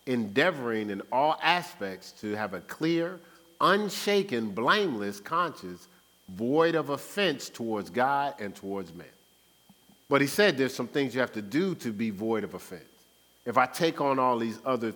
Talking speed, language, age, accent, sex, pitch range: 165 wpm, English, 50-69, American, male, 100-130 Hz